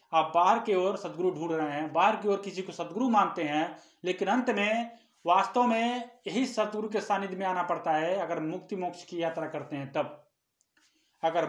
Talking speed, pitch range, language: 200 wpm, 160-210 Hz, Hindi